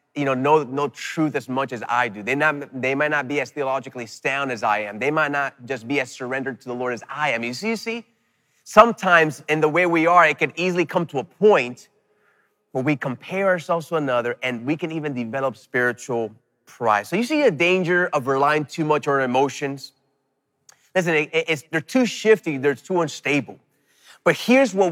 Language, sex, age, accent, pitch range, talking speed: English, male, 30-49, American, 135-180 Hz, 215 wpm